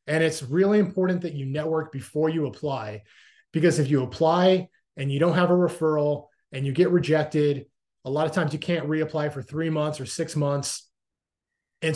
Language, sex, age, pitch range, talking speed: English, male, 30-49, 140-165 Hz, 190 wpm